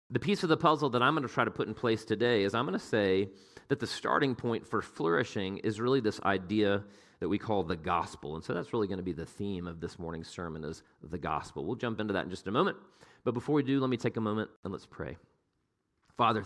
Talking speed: 265 wpm